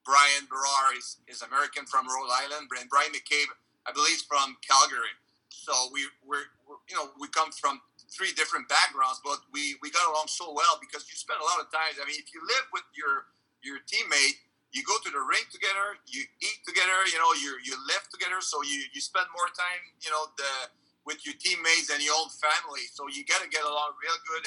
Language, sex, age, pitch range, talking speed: English, male, 40-59, 140-185 Hz, 215 wpm